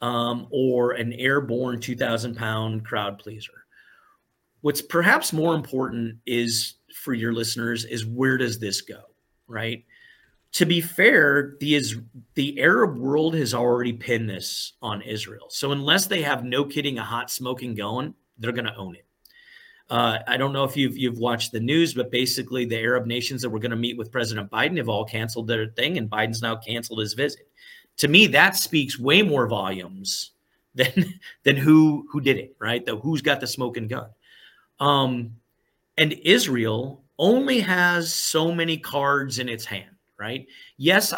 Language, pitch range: English, 115-150 Hz